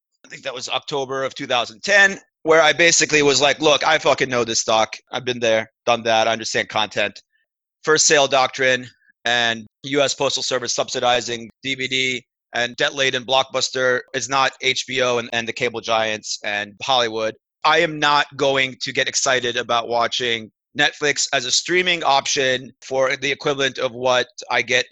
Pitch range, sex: 120-150 Hz, male